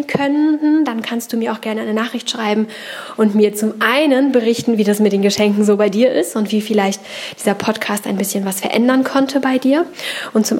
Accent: German